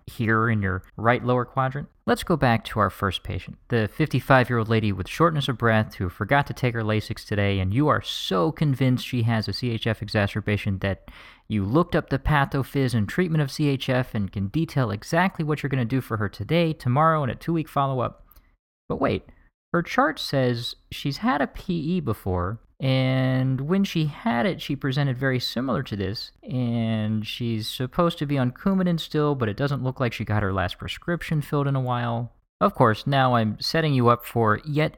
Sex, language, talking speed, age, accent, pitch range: male, English, 205 wpm, 40-59, American, 110-155 Hz